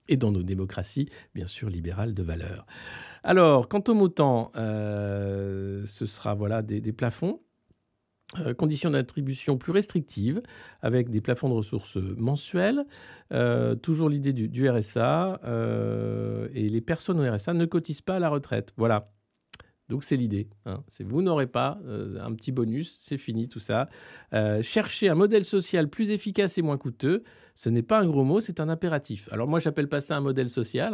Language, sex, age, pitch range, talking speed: French, male, 50-69, 105-155 Hz, 180 wpm